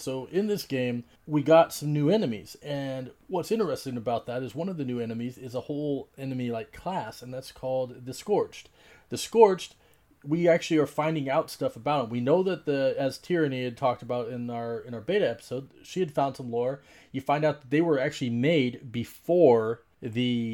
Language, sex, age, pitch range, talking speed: English, male, 30-49, 125-150 Hz, 205 wpm